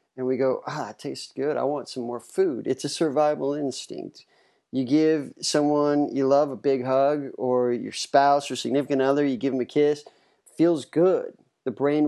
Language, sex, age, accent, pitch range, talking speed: English, male, 30-49, American, 130-150 Hz, 195 wpm